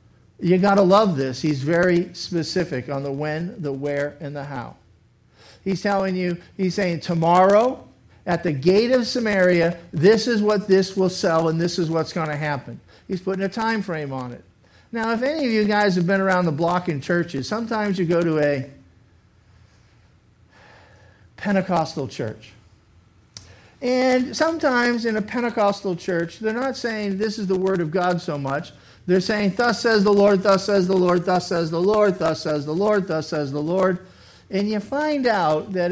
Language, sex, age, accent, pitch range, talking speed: English, male, 50-69, American, 140-205 Hz, 185 wpm